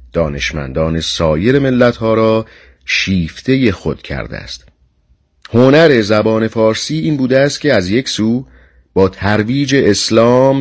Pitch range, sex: 80-115 Hz, male